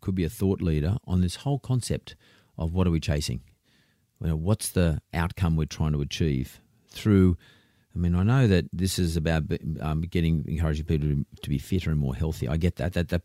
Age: 40-59